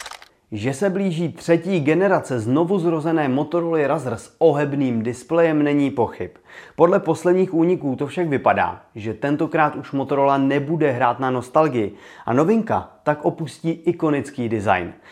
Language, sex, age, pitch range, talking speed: Czech, male, 30-49, 115-165 Hz, 130 wpm